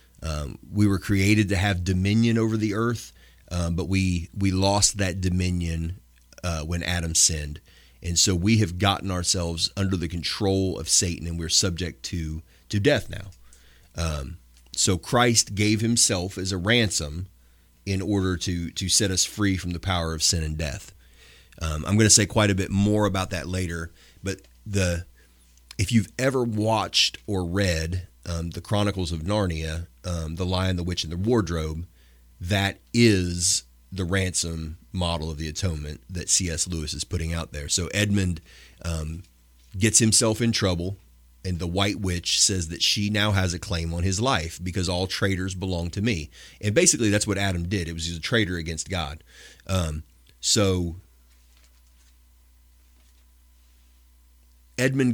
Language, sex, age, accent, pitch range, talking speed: English, male, 30-49, American, 80-100 Hz, 165 wpm